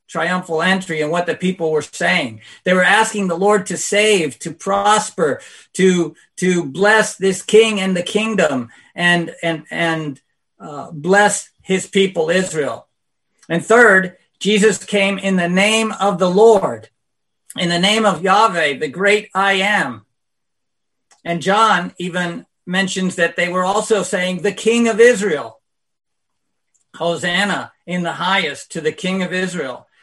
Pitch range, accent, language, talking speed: 175-210 Hz, American, English, 150 wpm